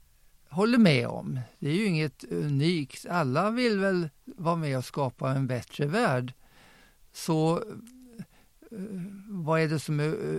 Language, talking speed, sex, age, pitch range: Swedish, 140 wpm, male, 50-69, 135-180 Hz